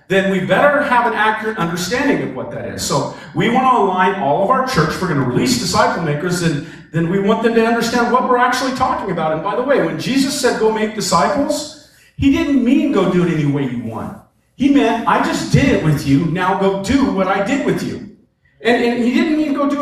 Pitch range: 170-245 Hz